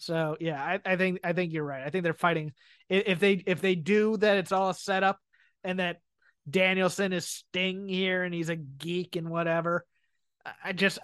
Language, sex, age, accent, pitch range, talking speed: English, male, 30-49, American, 175-210 Hz, 200 wpm